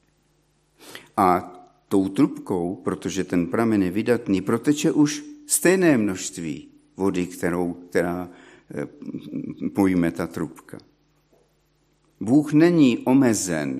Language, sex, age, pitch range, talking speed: Czech, male, 50-69, 95-125 Hz, 85 wpm